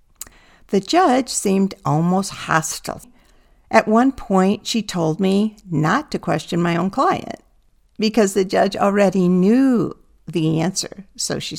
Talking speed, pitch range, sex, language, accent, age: 135 wpm, 155-210 Hz, female, English, American, 50-69